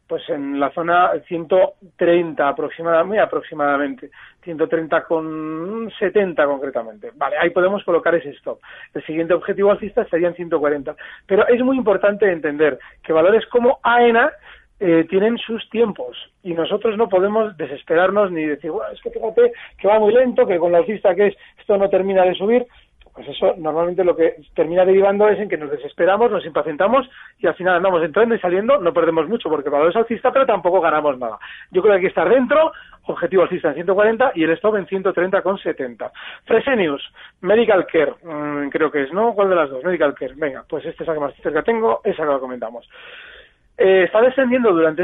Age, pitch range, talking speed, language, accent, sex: 40-59, 165-235 Hz, 190 wpm, Spanish, Spanish, male